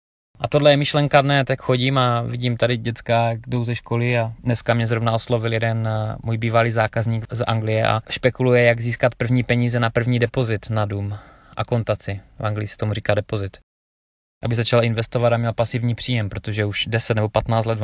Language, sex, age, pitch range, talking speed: Czech, male, 20-39, 105-120 Hz, 200 wpm